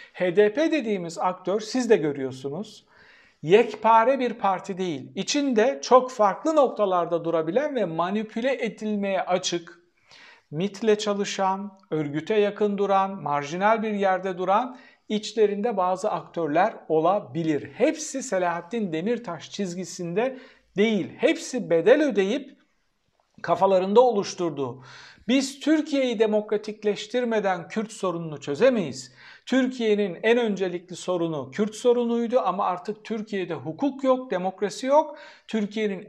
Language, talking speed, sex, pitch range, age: Turkish, 105 wpm, male, 180-240 Hz, 60-79